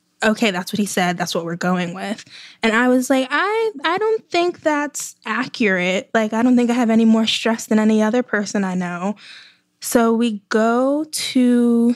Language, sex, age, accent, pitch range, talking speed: English, female, 10-29, American, 200-235 Hz, 195 wpm